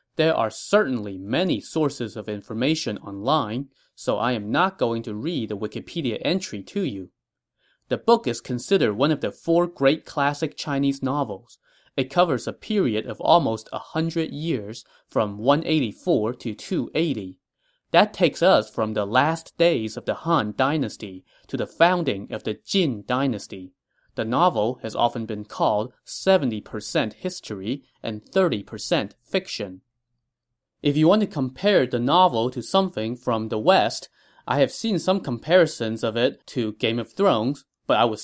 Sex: male